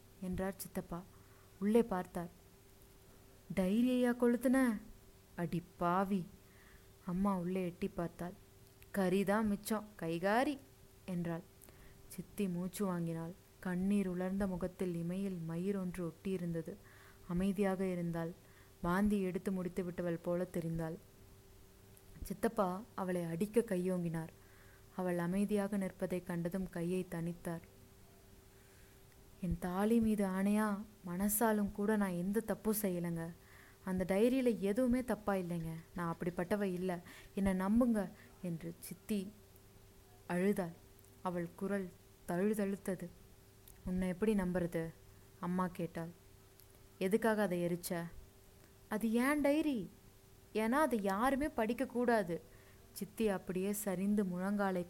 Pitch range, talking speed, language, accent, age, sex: 165-200 Hz, 95 wpm, Tamil, native, 20-39, female